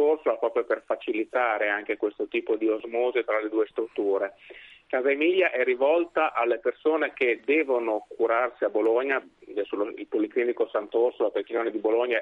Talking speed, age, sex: 145 wpm, 30-49, male